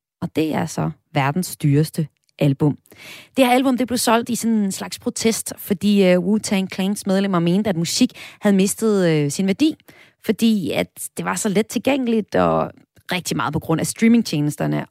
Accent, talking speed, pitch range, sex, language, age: native, 175 wpm, 160-225 Hz, female, Danish, 30-49